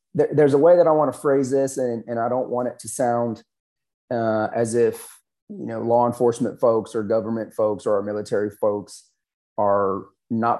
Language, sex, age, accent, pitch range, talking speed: English, male, 30-49, American, 110-130 Hz, 190 wpm